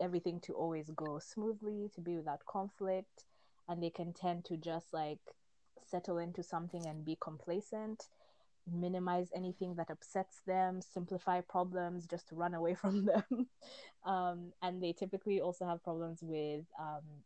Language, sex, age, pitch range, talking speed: English, female, 20-39, 165-185 Hz, 155 wpm